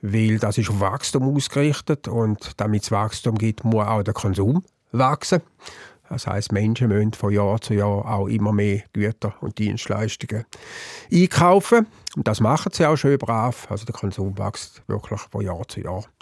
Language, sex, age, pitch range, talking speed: German, male, 50-69, 105-135 Hz, 175 wpm